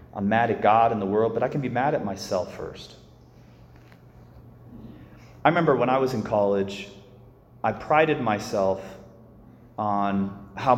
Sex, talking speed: male, 150 wpm